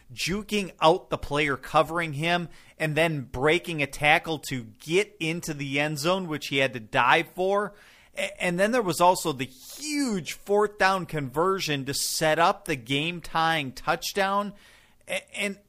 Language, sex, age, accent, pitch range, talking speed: English, male, 40-59, American, 125-175 Hz, 155 wpm